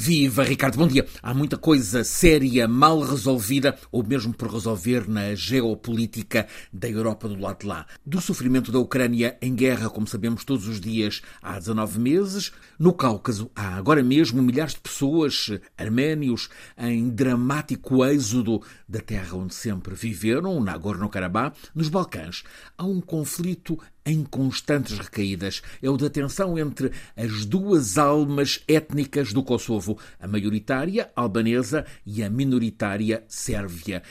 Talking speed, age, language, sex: 145 wpm, 50-69, Portuguese, male